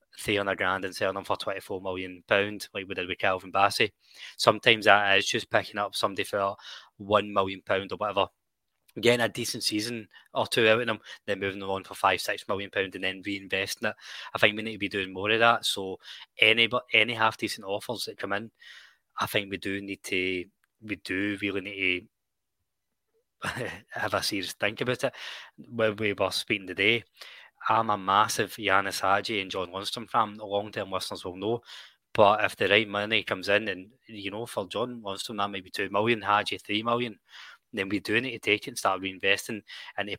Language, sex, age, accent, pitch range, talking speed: English, male, 20-39, British, 95-110 Hz, 200 wpm